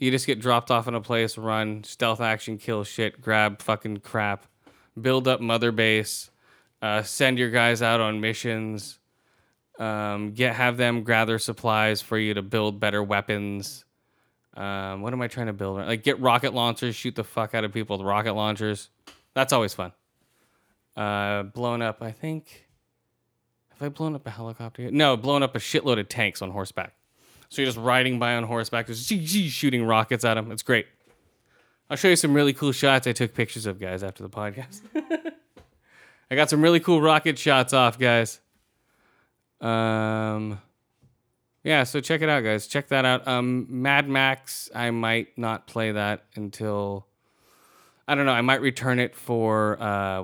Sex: male